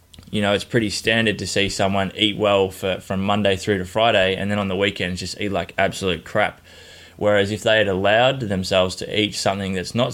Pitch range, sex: 95-105 Hz, male